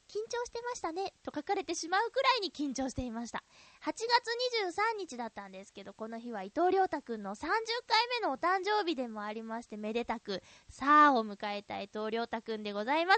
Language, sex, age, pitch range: Japanese, female, 20-39, 235-385 Hz